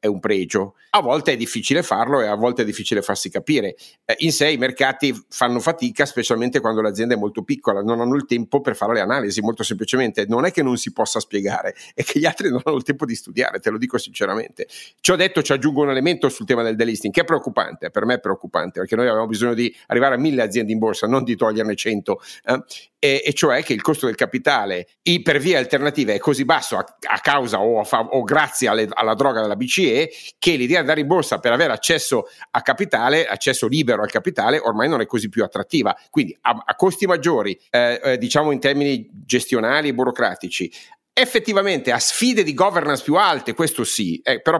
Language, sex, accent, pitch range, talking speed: Italian, male, native, 120-160 Hz, 215 wpm